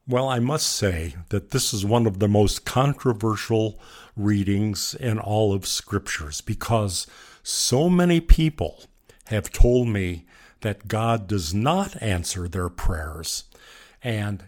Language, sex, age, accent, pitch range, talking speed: English, male, 50-69, American, 100-125 Hz, 135 wpm